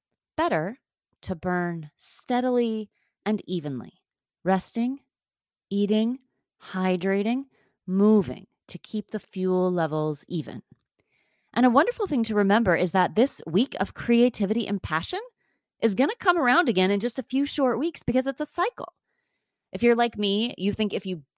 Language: English